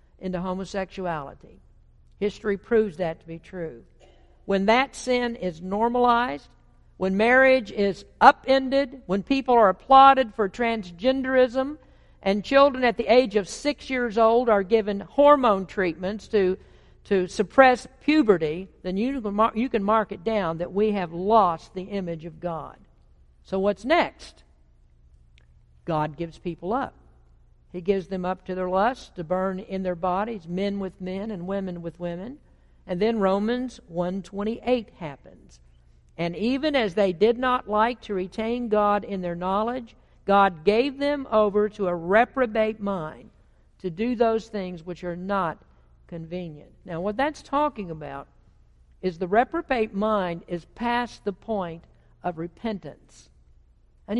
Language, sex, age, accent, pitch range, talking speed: English, female, 60-79, American, 175-235 Hz, 150 wpm